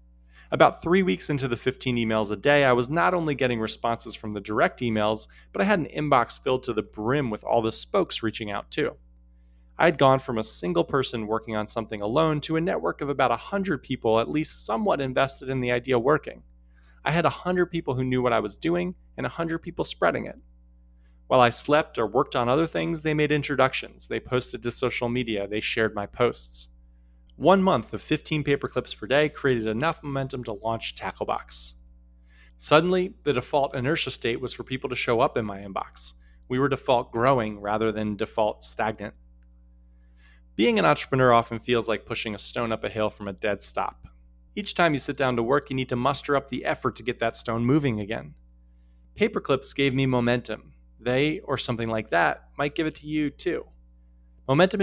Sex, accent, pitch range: male, American, 100-140 Hz